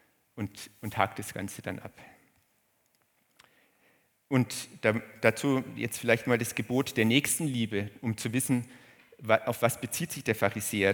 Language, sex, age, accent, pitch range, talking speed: German, male, 50-69, German, 110-130 Hz, 135 wpm